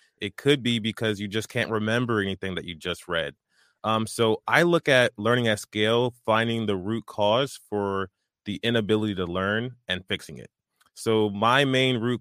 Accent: American